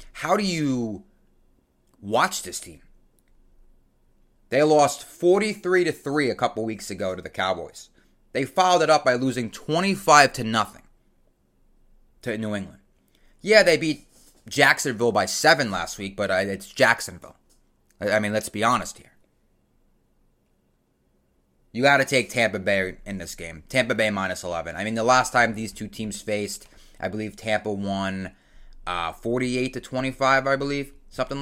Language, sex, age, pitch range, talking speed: English, male, 30-49, 100-130 Hz, 145 wpm